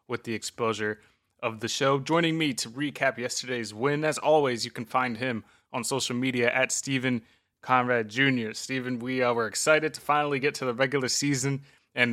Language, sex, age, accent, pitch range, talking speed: English, male, 20-39, American, 115-140 Hz, 185 wpm